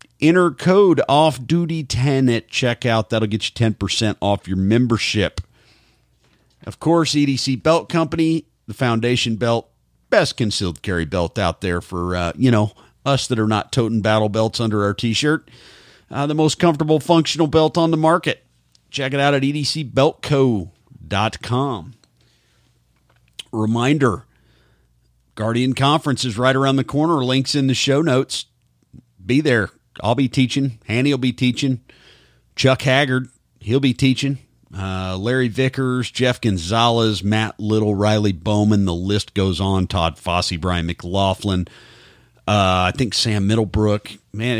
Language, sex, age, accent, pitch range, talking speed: English, male, 50-69, American, 100-135 Hz, 140 wpm